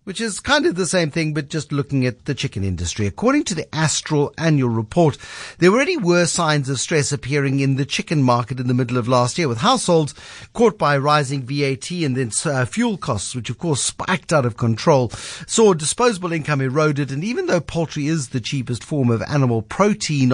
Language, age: English, 50-69